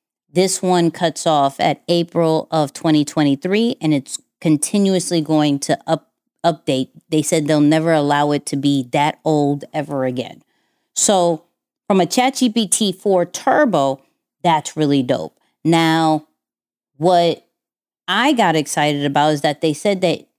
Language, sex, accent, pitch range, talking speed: English, female, American, 155-195 Hz, 135 wpm